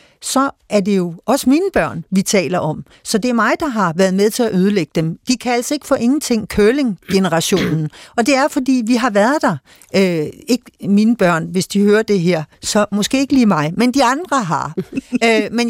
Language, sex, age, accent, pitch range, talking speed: Danish, female, 60-79, native, 185-230 Hz, 210 wpm